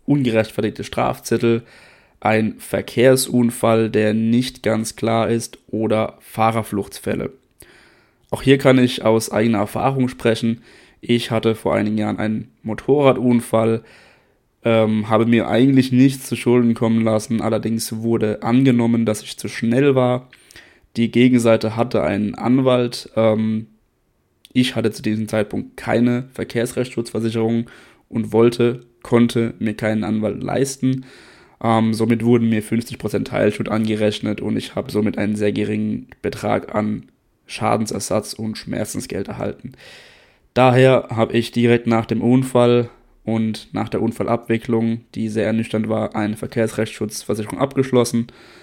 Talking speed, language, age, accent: 125 wpm, German, 20-39, German